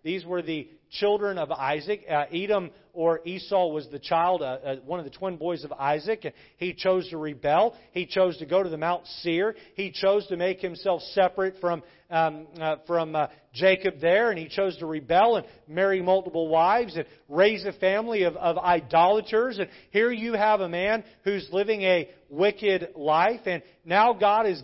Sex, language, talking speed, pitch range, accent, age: male, English, 190 wpm, 150-190 Hz, American, 40-59